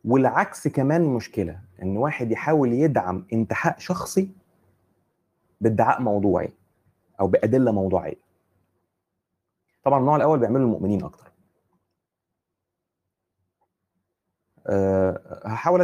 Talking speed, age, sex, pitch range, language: 80 wpm, 30-49, male, 95-145 Hz, Arabic